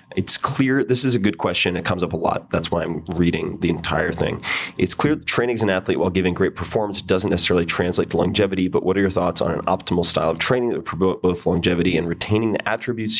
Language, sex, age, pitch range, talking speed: English, male, 30-49, 90-100 Hz, 250 wpm